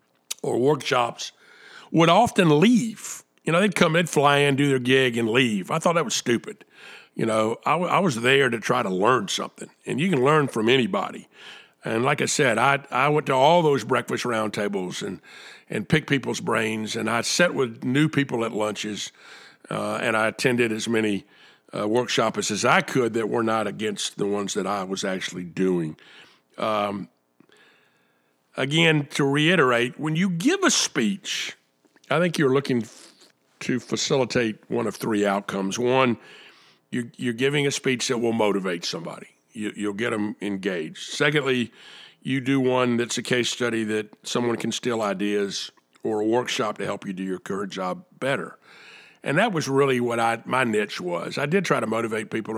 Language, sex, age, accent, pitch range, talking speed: English, male, 50-69, American, 105-145 Hz, 180 wpm